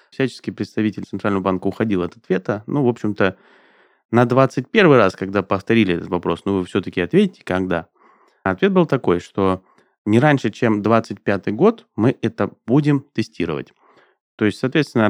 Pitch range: 95-130 Hz